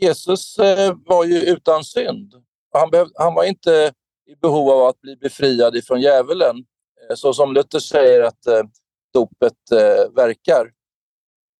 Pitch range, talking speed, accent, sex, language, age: 150-220 Hz, 120 wpm, native, male, Swedish, 50-69